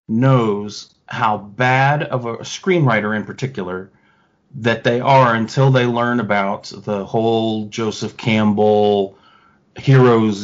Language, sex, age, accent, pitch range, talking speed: English, male, 30-49, American, 105-130 Hz, 115 wpm